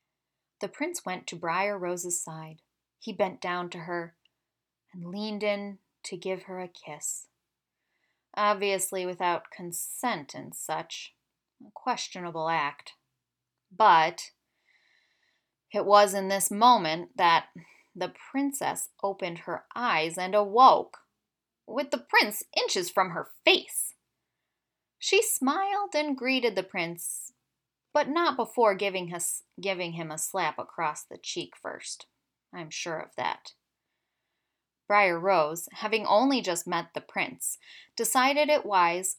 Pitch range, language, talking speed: 175-235 Hz, English, 125 wpm